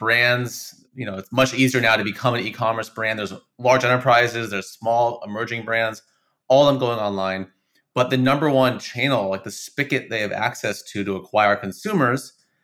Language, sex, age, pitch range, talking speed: English, male, 30-49, 105-130 Hz, 185 wpm